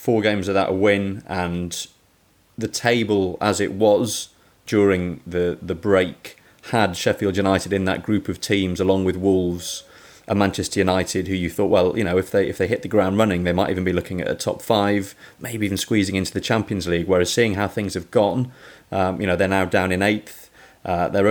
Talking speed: 210 wpm